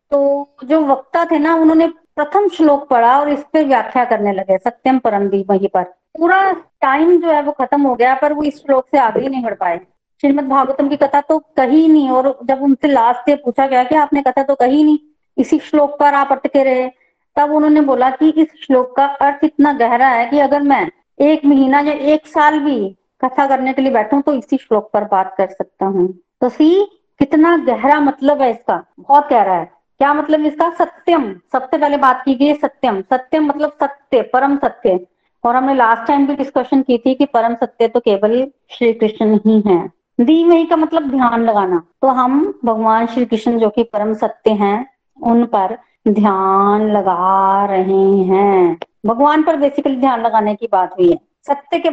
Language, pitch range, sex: Hindi, 230-295 Hz, female